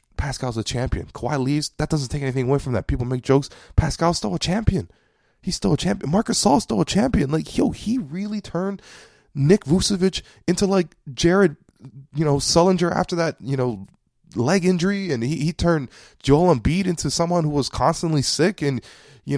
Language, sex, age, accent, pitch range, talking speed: English, male, 20-39, American, 110-165 Hz, 190 wpm